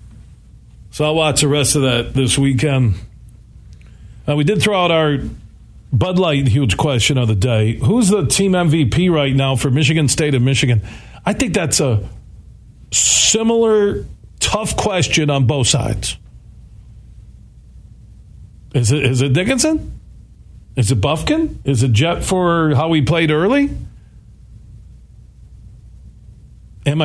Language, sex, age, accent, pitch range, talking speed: English, male, 50-69, American, 115-165 Hz, 135 wpm